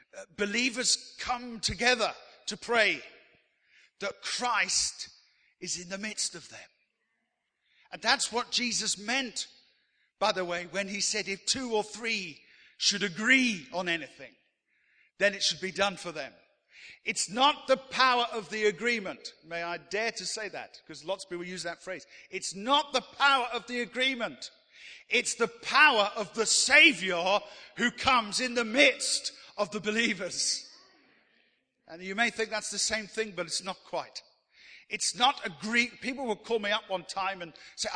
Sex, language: male, English